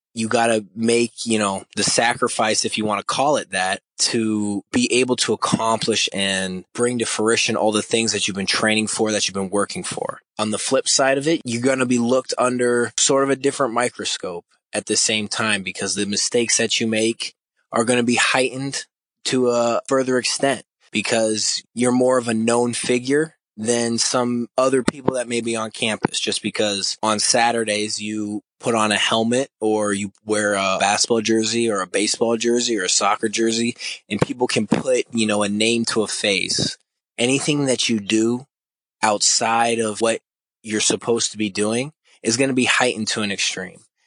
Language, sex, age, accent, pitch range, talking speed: English, male, 20-39, American, 105-120 Hz, 195 wpm